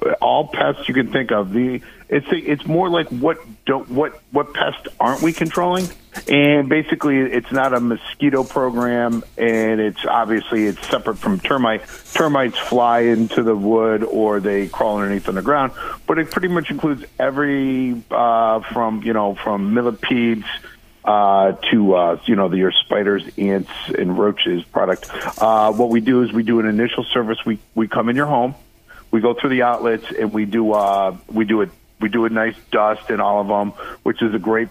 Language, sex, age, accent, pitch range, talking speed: English, male, 50-69, American, 105-125 Hz, 190 wpm